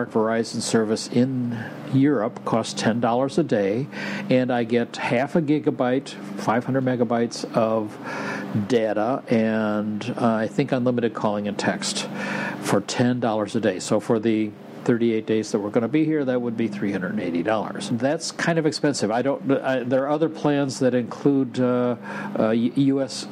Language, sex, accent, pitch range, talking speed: English, male, American, 115-135 Hz, 160 wpm